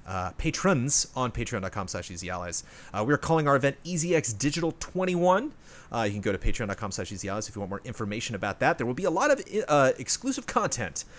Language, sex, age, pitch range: English, male, 30-49, 95-135 Hz